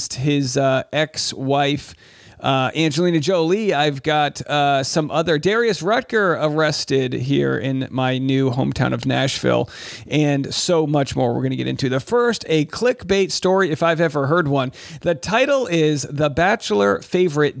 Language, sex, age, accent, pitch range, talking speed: English, male, 40-59, American, 140-190 Hz, 155 wpm